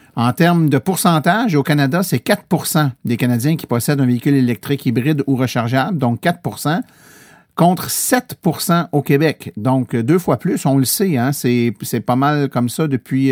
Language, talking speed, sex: French, 175 wpm, male